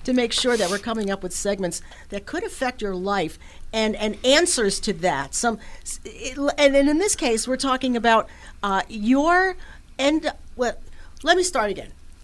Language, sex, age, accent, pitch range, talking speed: English, female, 50-69, American, 185-260 Hz, 170 wpm